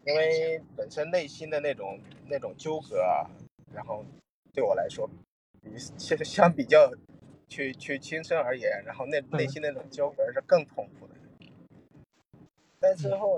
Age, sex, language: 20-39, male, Chinese